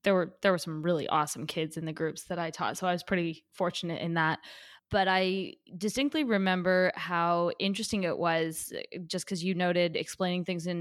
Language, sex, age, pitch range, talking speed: English, female, 20-39, 175-205 Hz, 200 wpm